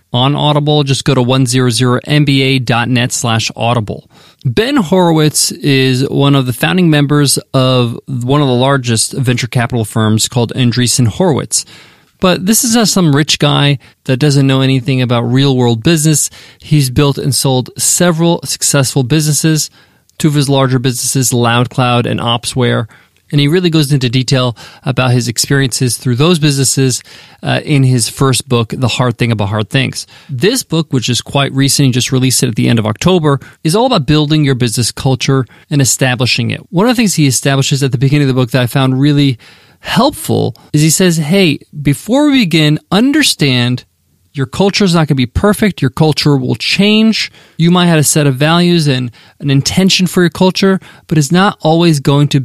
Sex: male